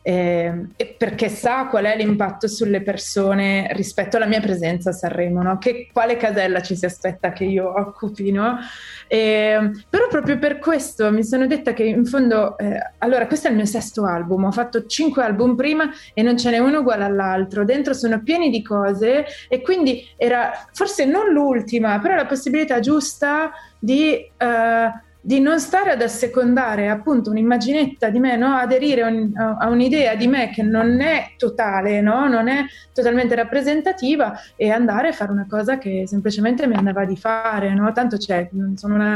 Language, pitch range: Italian, 205-260 Hz